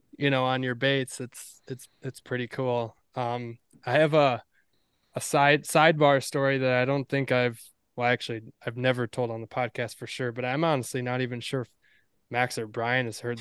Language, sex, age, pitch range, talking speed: English, male, 20-39, 120-135 Hz, 195 wpm